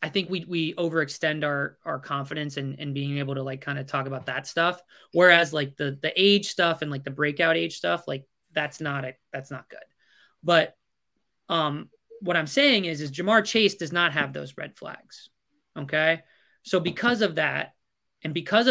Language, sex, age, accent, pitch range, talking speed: English, male, 20-39, American, 145-185 Hz, 200 wpm